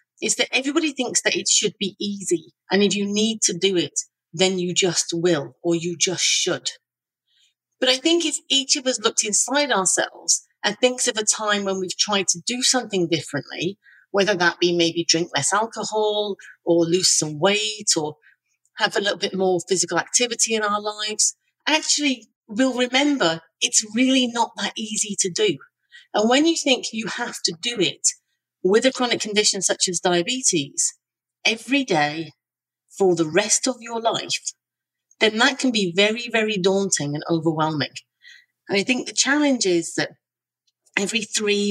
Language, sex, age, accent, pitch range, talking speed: English, female, 40-59, British, 175-235 Hz, 175 wpm